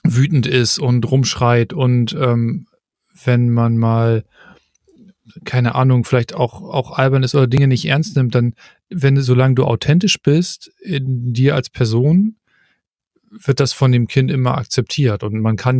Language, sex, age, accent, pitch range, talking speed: German, male, 40-59, German, 120-135 Hz, 160 wpm